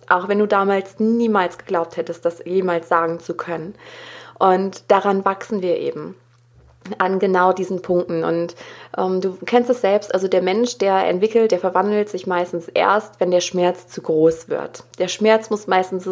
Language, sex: German, female